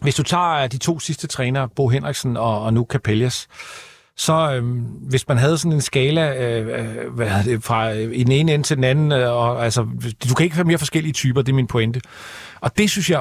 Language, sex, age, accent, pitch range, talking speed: Danish, male, 40-59, native, 130-160 Hz, 220 wpm